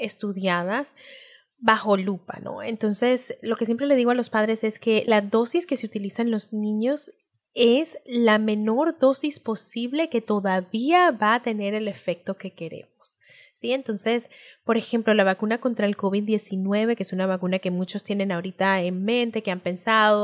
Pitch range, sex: 200-250 Hz, female